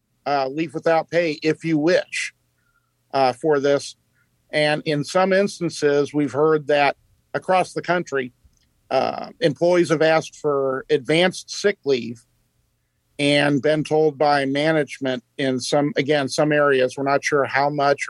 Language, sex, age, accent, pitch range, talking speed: English, male, 50-69, American, 135-160 Hz, 145 wpm